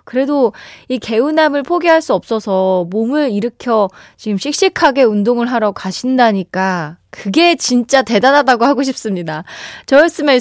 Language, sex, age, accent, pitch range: Korean, female, 20-39, native, 195-275 Hz